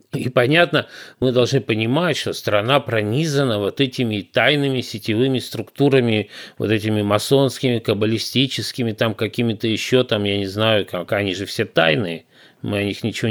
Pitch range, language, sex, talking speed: 110-145 Hz, Russian, male, 150 wpm